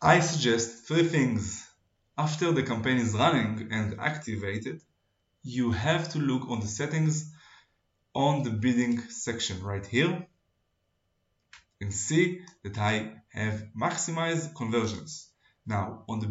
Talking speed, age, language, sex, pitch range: 125 wpm, 20-39, Hebrew, male, 105-150 Hz